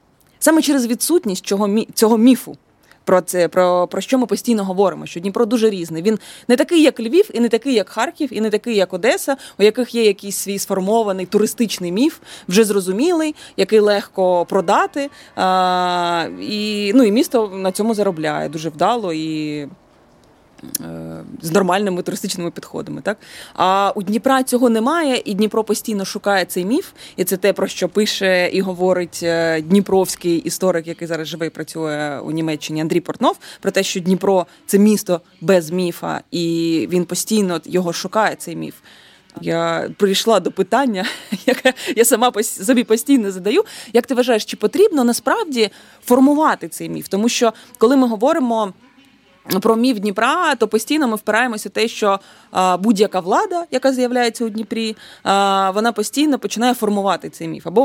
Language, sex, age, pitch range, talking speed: Ukrainian, female, 20-39, 180-235 Hz, 160 wpm